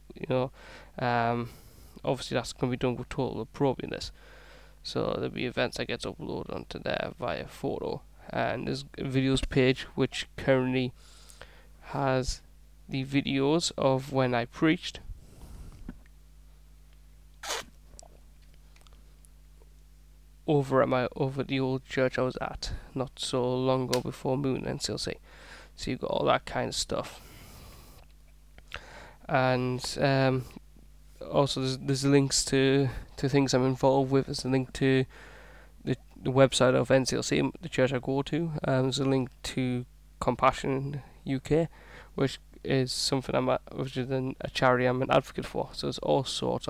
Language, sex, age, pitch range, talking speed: English, male, 20-39, 120-135 Hz, 145 wpm